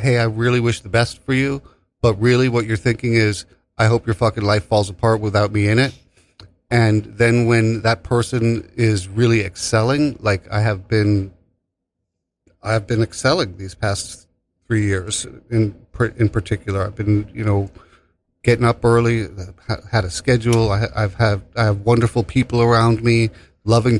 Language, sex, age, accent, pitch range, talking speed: English, male, 40-59, American, 100-120 Hz, 170 wpm